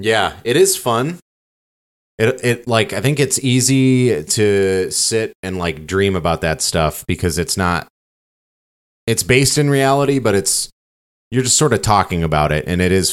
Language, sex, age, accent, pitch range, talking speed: English, male, 30-49, American, 80-105 Hz, 175 wpm